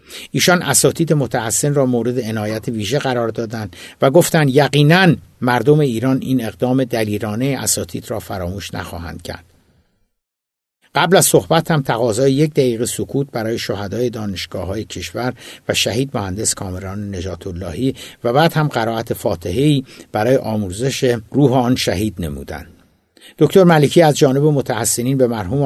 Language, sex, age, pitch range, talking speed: Persian, male, 60-79, 95-130 Hz, 135 wpm